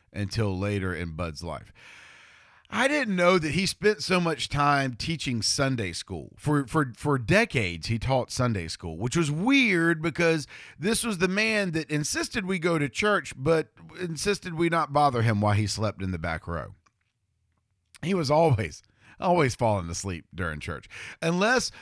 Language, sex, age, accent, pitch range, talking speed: English, male, 40-59, American, 95-150 Hz, 170 wpm